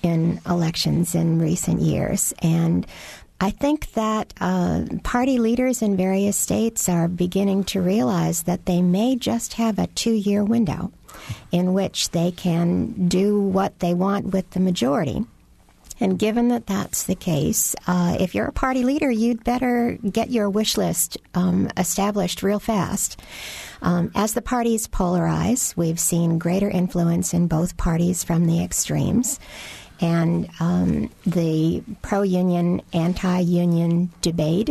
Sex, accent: female, American